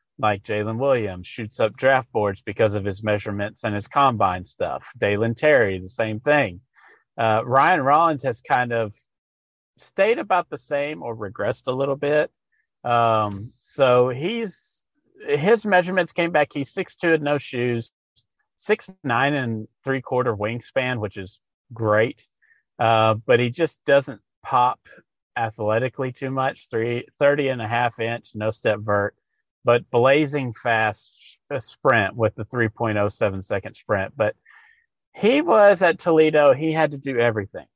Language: English